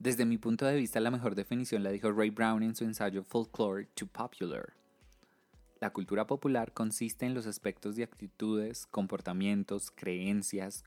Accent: Colombian